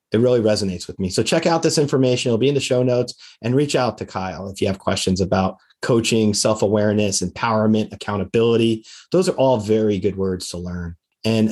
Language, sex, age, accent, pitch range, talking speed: English, male, 30-49, American, 105-130 Hz, 205 wpm